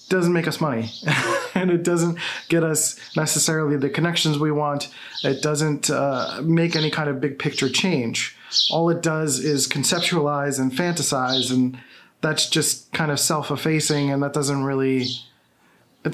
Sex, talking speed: male, 155 wpm